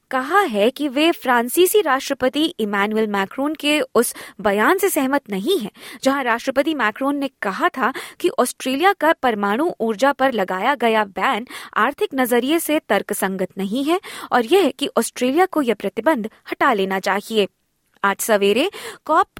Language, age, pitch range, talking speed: Hindi, 20-39, 210-305 Hz, 150 wpm